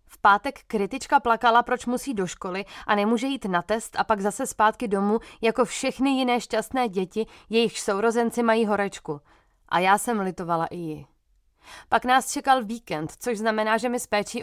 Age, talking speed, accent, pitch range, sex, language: 20-39, 180 wpm, native, 190-235 Hz, female, Czech